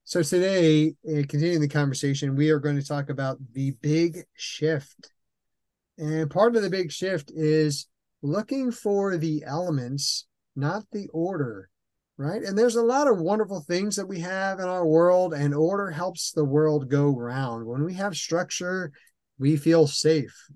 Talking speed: 165 wpm